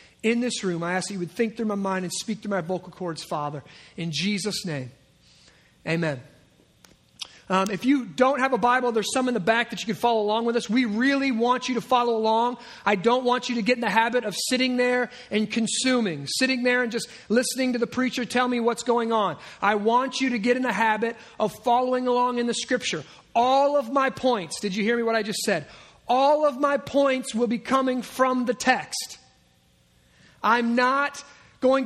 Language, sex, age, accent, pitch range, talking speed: English, male, 30-49, American, 210-250 Hz, 215 wpm